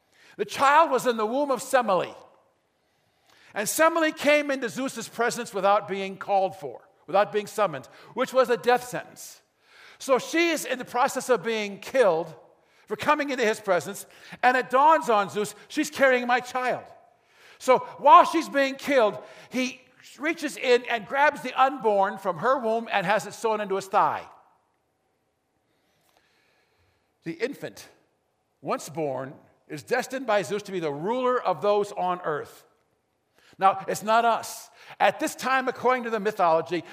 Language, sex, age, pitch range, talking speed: English, male, 50-69, 200-270 Hz, 160 wpm